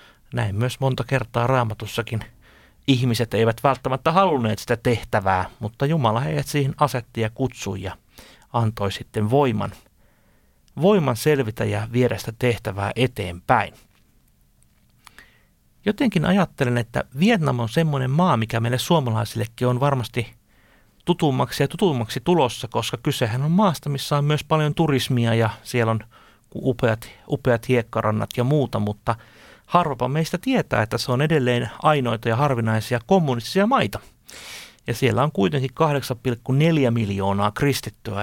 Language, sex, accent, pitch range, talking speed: Finnish, male, native, 115-145 Hz, 130 wpm